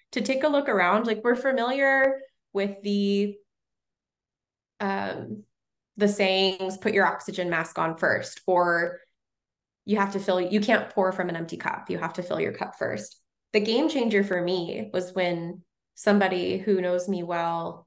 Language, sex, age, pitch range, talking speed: English, female, 20-39, 175-215 Hz, 170 wpm